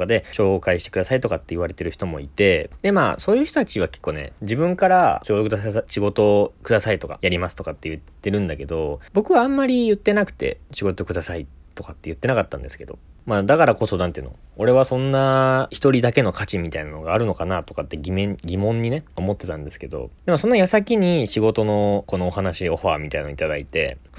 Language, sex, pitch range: Japanese, male, 85-135 Hz